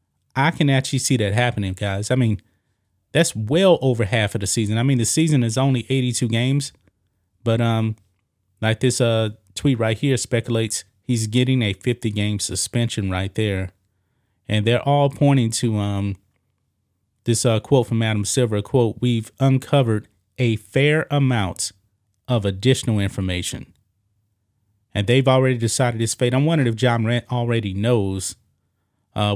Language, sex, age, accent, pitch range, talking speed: English, male, 30-49, American, 100-125 Hz, 155 wpm